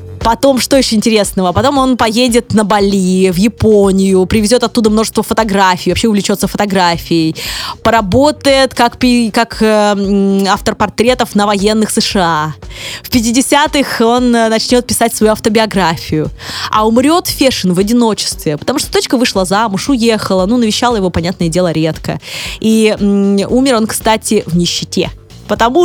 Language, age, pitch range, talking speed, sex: Russian, 20-39, 185-240 Hz, 140 wpm, female